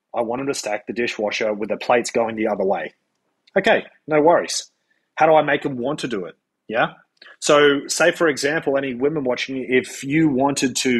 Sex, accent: male, Australian